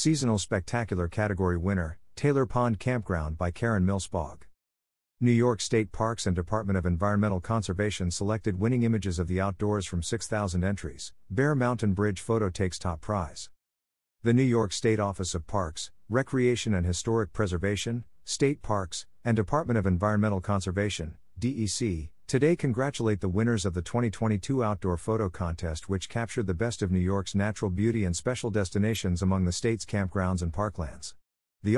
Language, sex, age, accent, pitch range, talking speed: English, male, 50-69, American, 90-115 Hz, 155 wpm